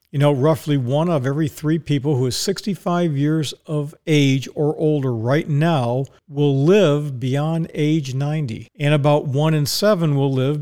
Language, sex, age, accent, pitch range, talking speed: English, male, 50-69, American, 135-160 Hz, 170 wpm